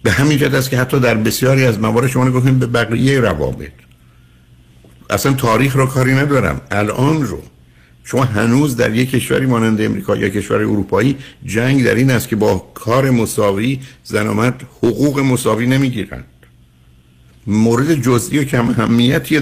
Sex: male